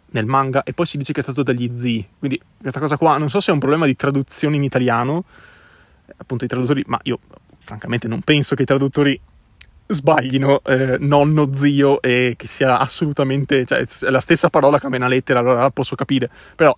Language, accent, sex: Italian, native, male